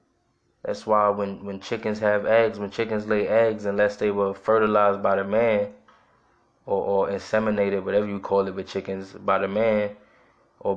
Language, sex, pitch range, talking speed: English, male, 100-110 Hz, 175 wpm